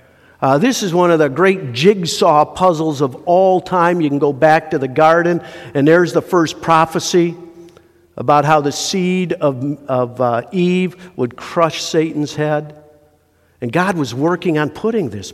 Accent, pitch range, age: American, 135-170 Hz, 50-69